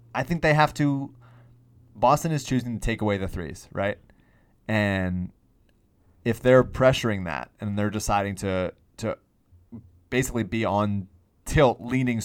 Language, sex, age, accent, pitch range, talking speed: English, male, 30-49, American, 95-115 Hz, 145 wpm